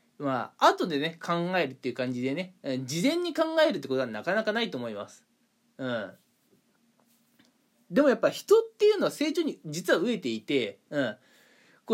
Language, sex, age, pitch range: Japanese, male, 20-39, 180-295 Hz